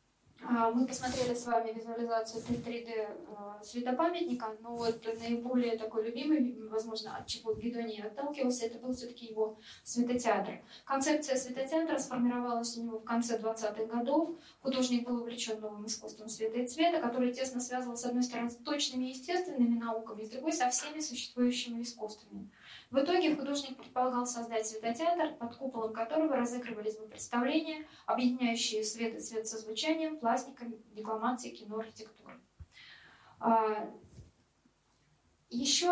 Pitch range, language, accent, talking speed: 225-270 Hz, Russian, native, 130 wpm